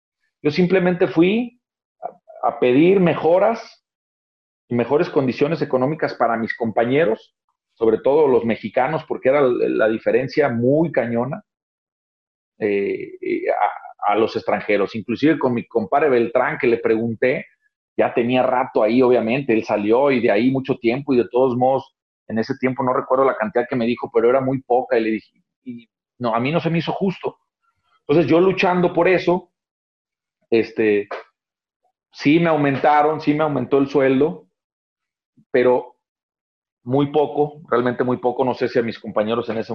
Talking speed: 160 wpm